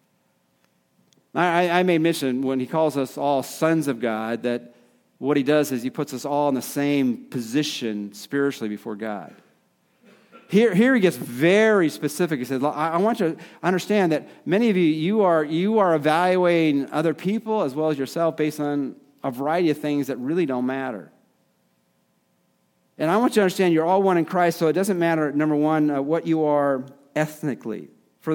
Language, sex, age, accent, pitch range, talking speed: English, male, 40-59, American, 130-175 Hz, 190 wpm